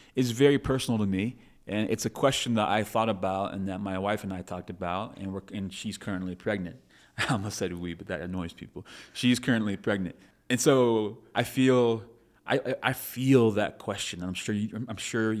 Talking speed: 205 wpm